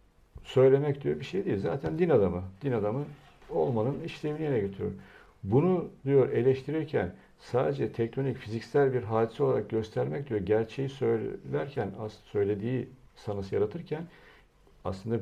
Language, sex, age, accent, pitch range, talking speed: Turkish, male, 60-79, native, 95-135 Hz, 120 wpm